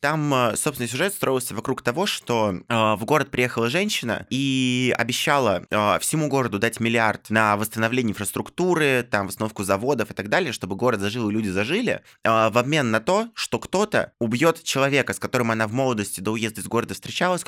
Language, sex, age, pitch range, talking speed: Russian, male, 20-39, 110-135 Hz, 180 wpm